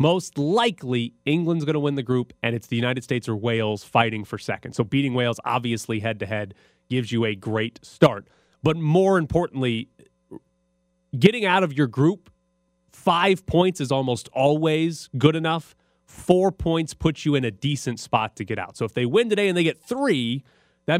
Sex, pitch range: male, 110-150 Hz